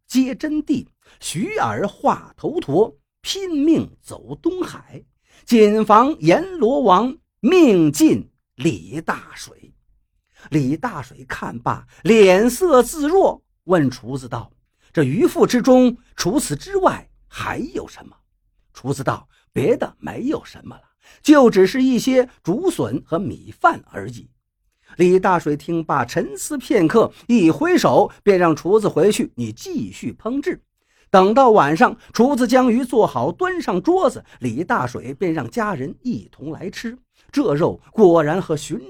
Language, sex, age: Chinese, male, 50-69